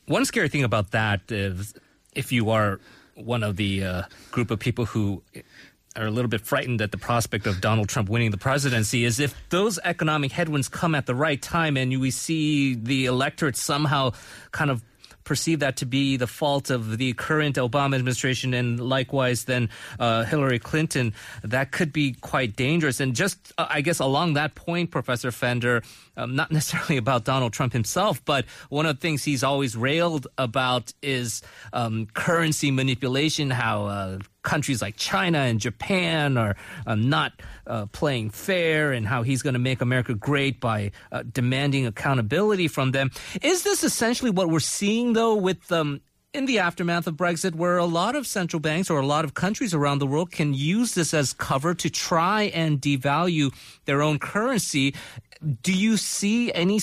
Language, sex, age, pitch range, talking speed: English, male, 30-49, 125-165 Hz, 180 wpm